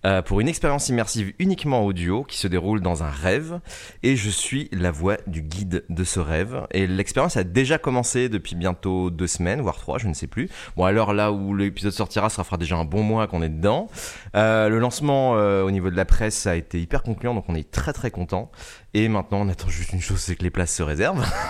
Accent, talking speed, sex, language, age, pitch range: French, 235 wpm, male, French, 30-49, 90-115 Hz